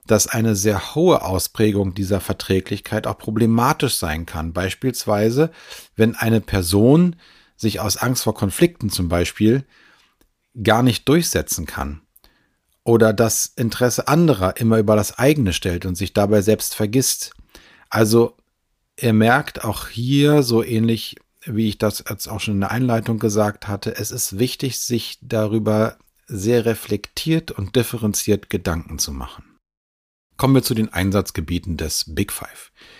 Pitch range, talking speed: 90-115 Hz, 140 wpm